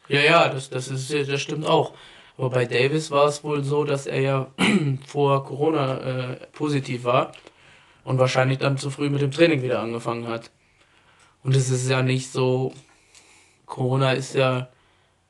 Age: 20-39